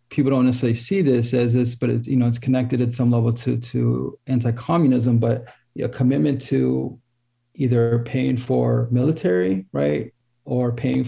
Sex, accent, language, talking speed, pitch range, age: male, American, English, 175 wpm, 115-130 Hz, 30-49